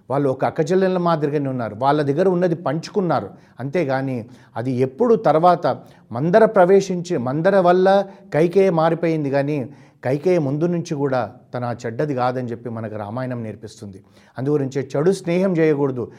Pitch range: 125-170 Hz